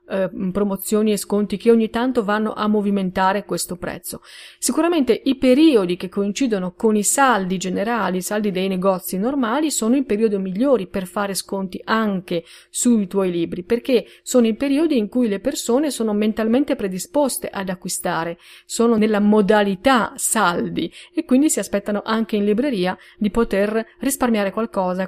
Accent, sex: native, female